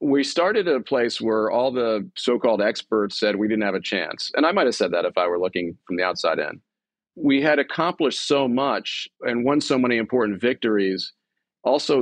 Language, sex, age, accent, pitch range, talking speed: English, male, 40-59, American, 100-125 Hz, 210 wpm